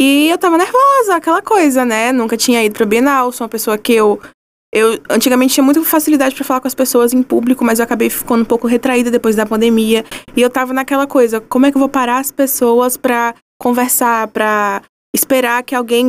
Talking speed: 215 wpm